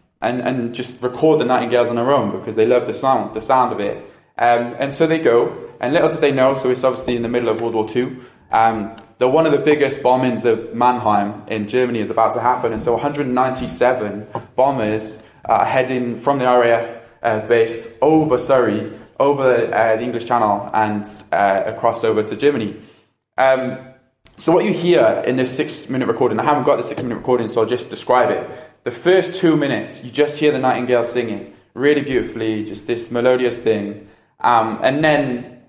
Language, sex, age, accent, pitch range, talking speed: English, male, 20-39, British, 115-140 Hz, 195 wpm